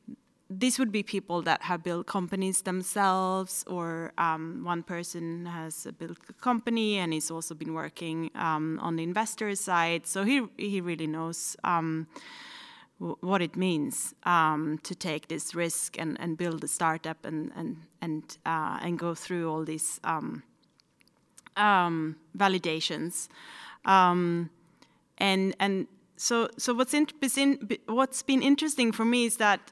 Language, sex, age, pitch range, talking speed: English, female, 30-49, 170-225 Hz, 145 wpm